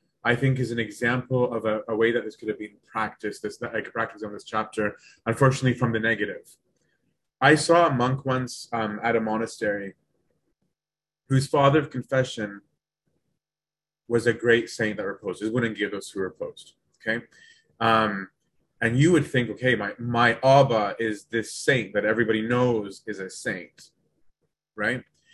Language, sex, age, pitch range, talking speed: English, male, 30-49, 110-130 Hz, 170 wpm